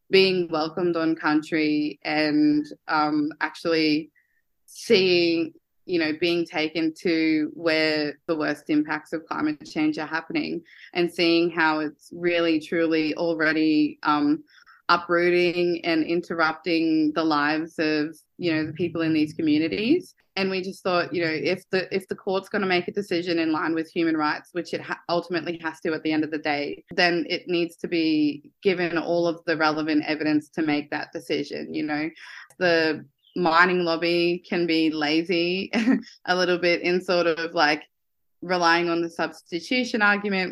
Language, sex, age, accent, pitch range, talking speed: English, female, 20-39, Australian, 155-180 Hz, 165 wpm